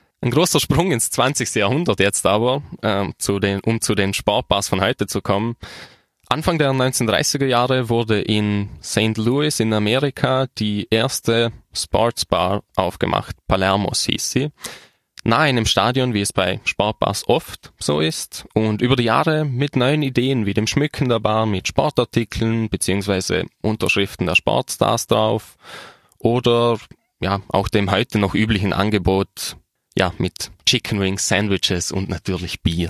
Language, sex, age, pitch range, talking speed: German, male, 10-29, 100-125 Hz, 145 wpm